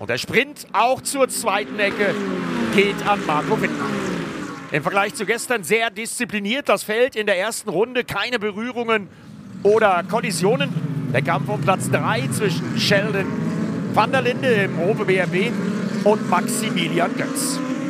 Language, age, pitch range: German, 50-69, 175-220 Hz